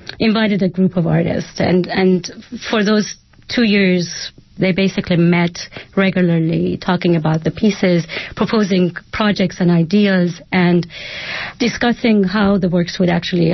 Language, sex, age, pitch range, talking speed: English, female, 30-49, 170-200 Hz, 135 wpm